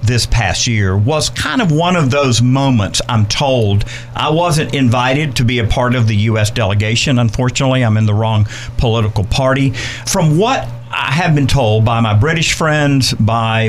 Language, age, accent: English, 50-69, American